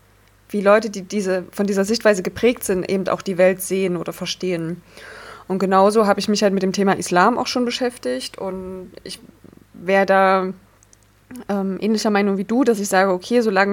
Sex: female